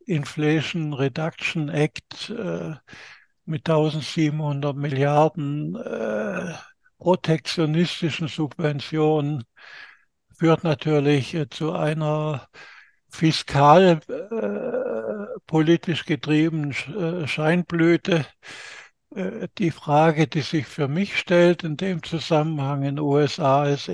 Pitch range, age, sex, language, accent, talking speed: 150-170 Hz, 60-79, male, German, German, 85 wpm